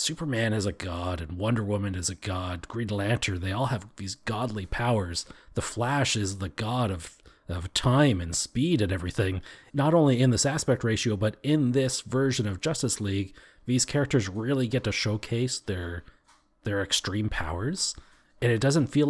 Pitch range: 95-120 Hz